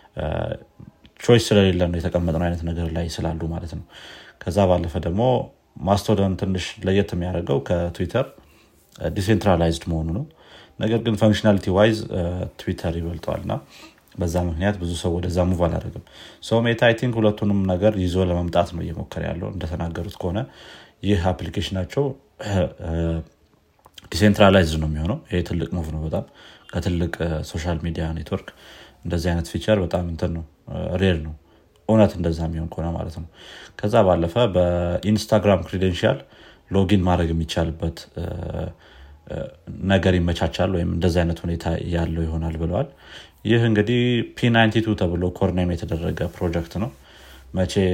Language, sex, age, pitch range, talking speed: Amharic, male, 30-49, 85-100 Hz, 110 wpm